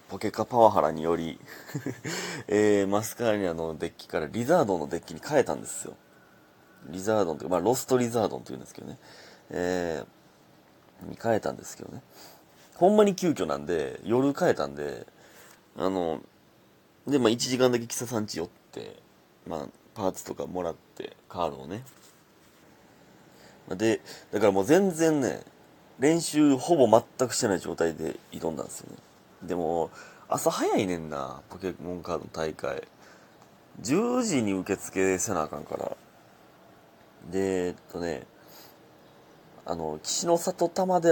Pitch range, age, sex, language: 80-120 Hz, 30-49, male, Japanese